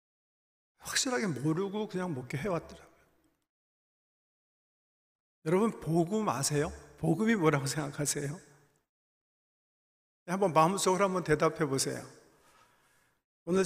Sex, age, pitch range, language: male, 50-69, 150-185 Hz, Korean